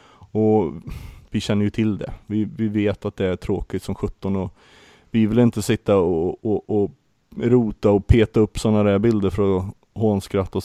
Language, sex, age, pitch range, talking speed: Swedish, male, 30-49, 100-115 Hz, 190 wpm